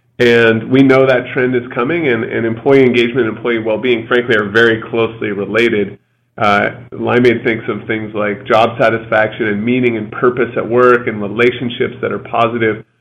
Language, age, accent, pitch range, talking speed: English, 30-49, American, 115-130 Hz, 175 wpm